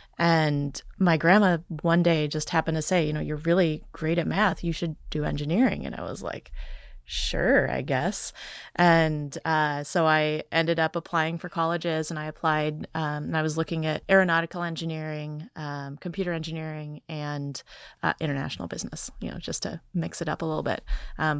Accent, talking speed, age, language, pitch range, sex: American, 180 wpm, 20-39, English, 150-175 Hz, female